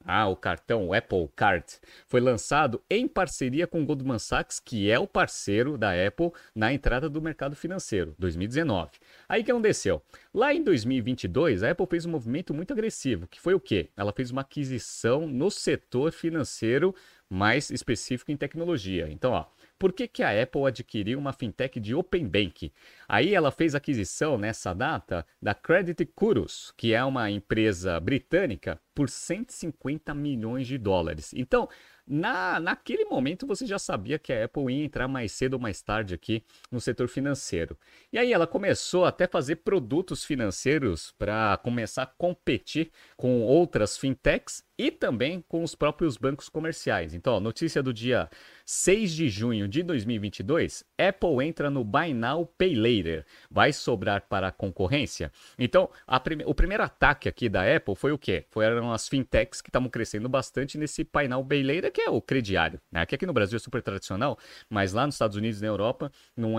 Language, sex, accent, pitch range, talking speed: Portuguese, male, Brazilian, 110-160 Hz, 175 wpm